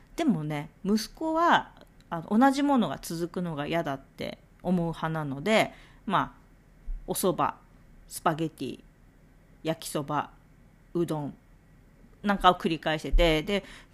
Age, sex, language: 40-59, female, Japanese